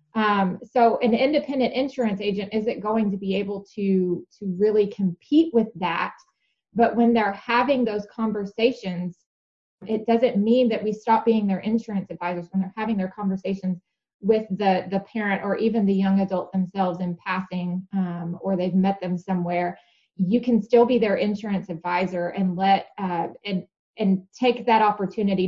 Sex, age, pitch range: female, 20-39, 190-230 Hz